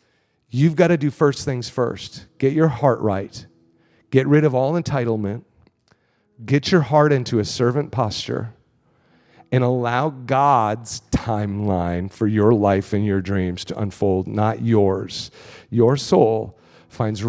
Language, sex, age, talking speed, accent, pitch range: English, male, 40-59, 140 wpm, American, 105-130 Hz